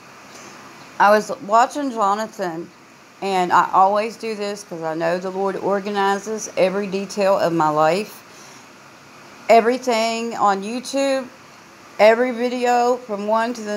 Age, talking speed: 40-59, 125 wpm